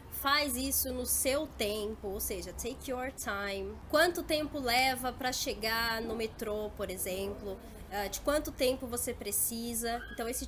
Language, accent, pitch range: Portuguese, Brazilian, 215-275 Hz